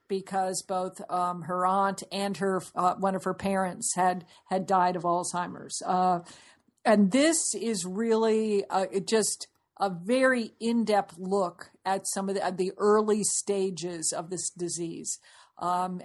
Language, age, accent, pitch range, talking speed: English, 50-69, American, 185-215 Hz, 145 wpm